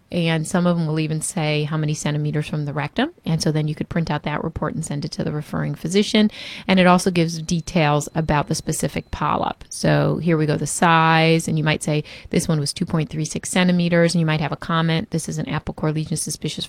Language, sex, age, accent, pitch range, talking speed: English, female, 30-49, American, 155-185 Hz, 235 wpm